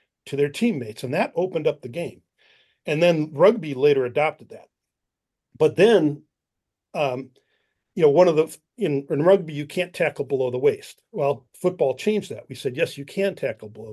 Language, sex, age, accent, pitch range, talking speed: English, male, 50-69, American, 140-185 Hz, 185 wpm